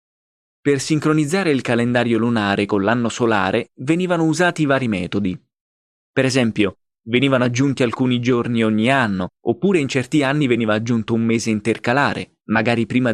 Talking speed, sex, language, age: 140 wpm, male, Italian, 20-39